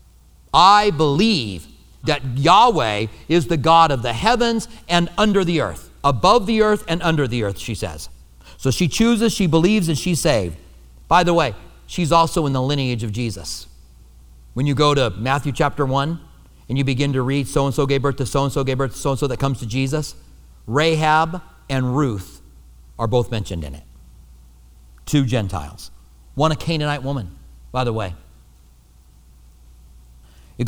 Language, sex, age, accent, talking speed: English, male, 40-59, American, 165 wpm